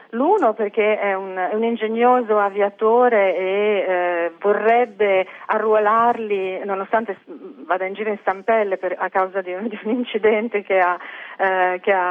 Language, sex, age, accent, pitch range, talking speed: Italian, female, 40-59, native, 180-220 Hz, 130 wpm